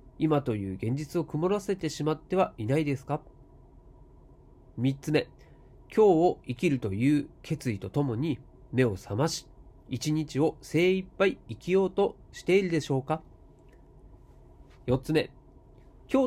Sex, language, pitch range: male, Japanese, 115-160 Hz